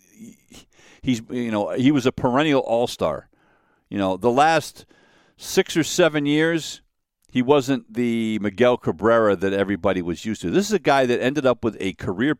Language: English